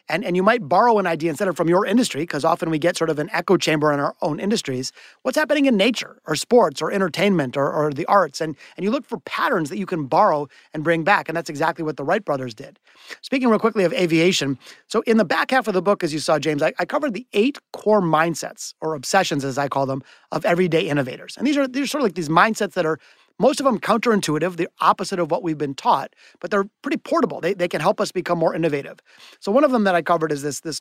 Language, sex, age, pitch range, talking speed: English, male, 30-49, 160-210 Hz, 265 wpm